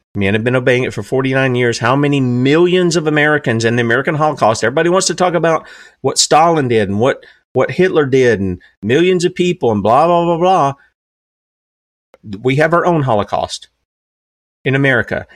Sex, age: male, 40-59